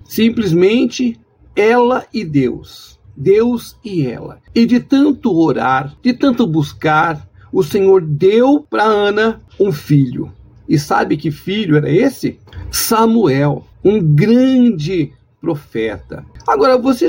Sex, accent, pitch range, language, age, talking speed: male, Brazilian, 145-235 Hz, Portuguese, 50-69, 115 wpm